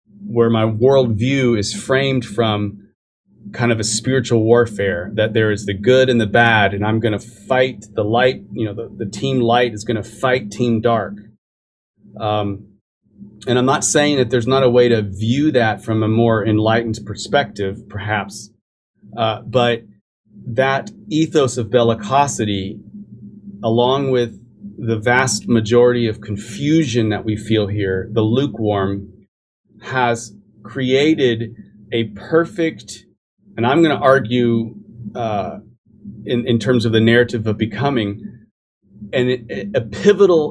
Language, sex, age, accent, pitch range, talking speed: English, male, 30-49, American, 105-130 Hz, 140 wpm